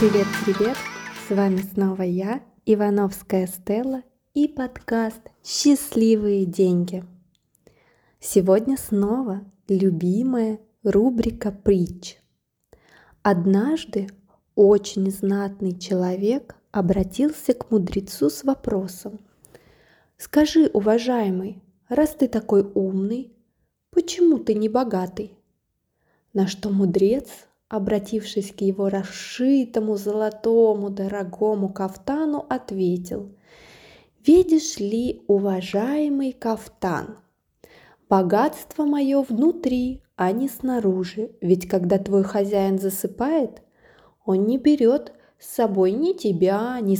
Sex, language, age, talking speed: female, Russian, 20-39, 90 wpm